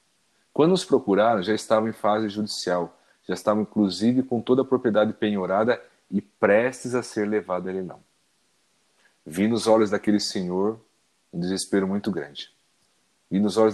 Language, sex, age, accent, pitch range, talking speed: Portuguese, male, 40-59, Brazilian, 90-110 Hz, 155 wpm